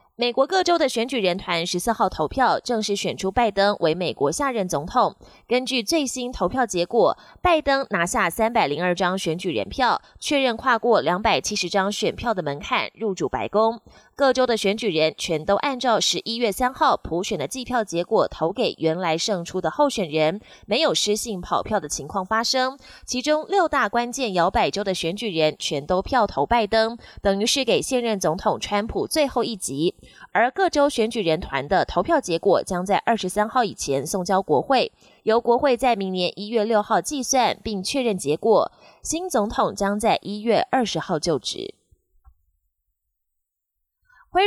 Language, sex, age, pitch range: Chinese, female, 20-39, 185-250 Hz